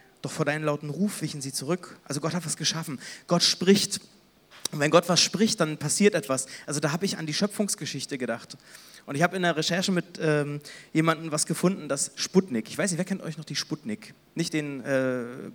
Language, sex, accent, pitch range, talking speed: German, male, German, 150-185 Hz, 215 wpm